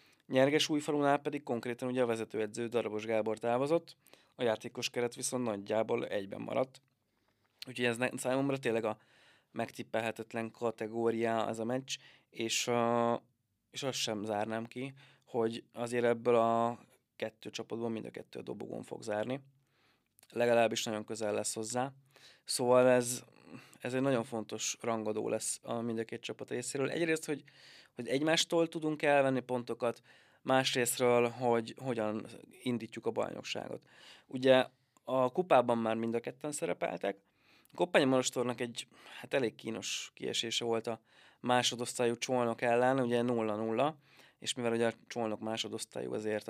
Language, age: Hungarian, 20-39